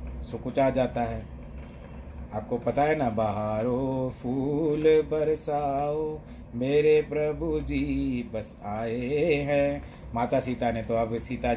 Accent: native